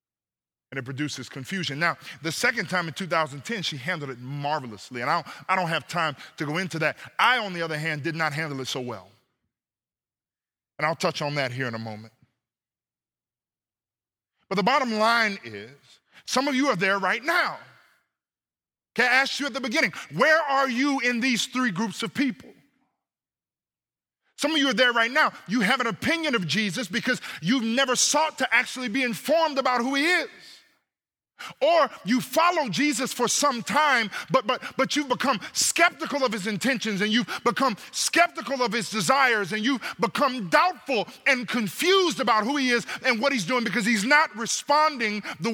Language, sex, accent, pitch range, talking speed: English, male, American, 160-265 Hz, 185 wpm